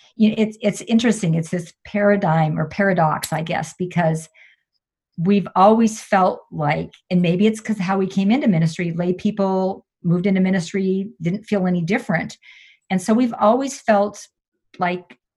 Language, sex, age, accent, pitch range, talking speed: English, female, 50-69, American, 160-205 Hz, 160 wpm